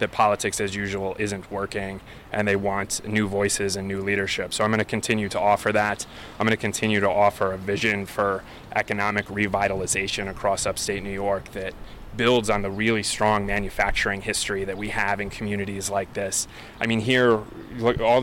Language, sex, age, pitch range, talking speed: English, male, 20-39, 100-110 Hz, 190 wpm